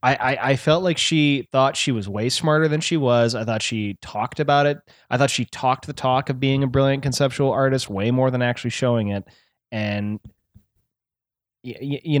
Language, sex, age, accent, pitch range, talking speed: English, male, 20-39, American, 105-140 Hz, 190 wpm